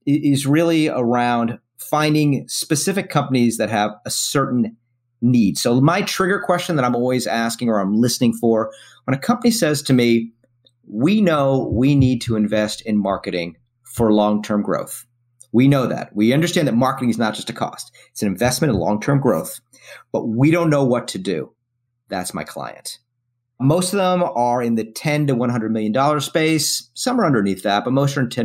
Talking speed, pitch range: 190 wpm, 110-140 Hz